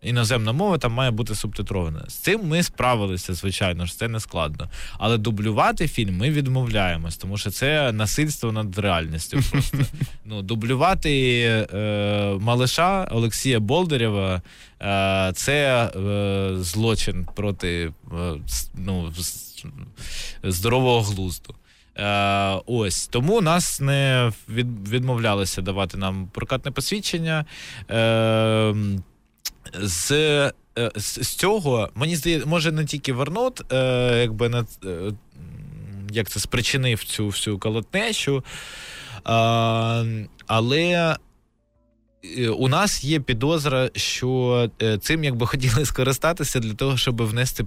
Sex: male